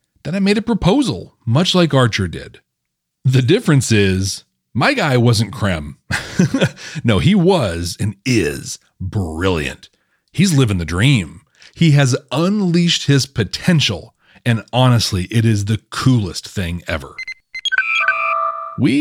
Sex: male